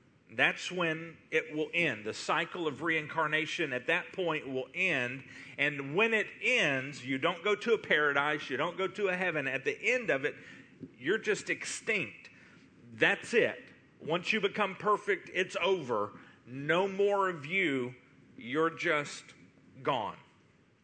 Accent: American